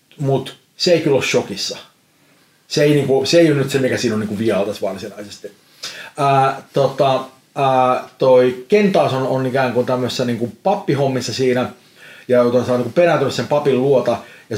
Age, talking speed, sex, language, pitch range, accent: 30-49, 155 wpm, male, Finnish, 115-135 Hz, native